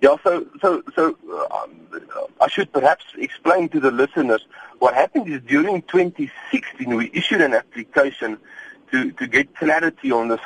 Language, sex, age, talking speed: English, male, 40-59, 155 wpm